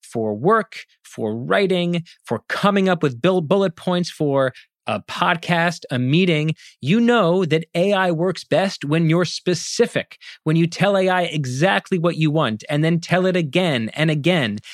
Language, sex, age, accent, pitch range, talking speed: English, male, 30-49, American, 135-180 Hz, 160 wpm